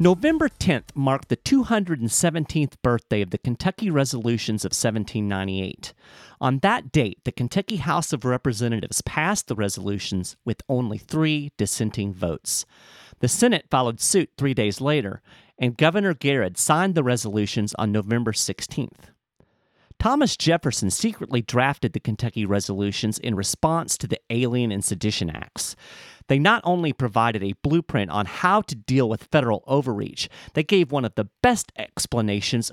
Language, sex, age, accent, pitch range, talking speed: English, male, 40-59, American, 110-160 Hz, 145 wpm